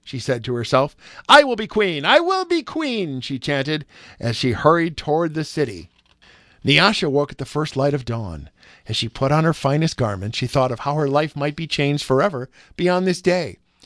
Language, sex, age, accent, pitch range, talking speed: English, male, 50-69, American, 125-175 Hz, 210 wpm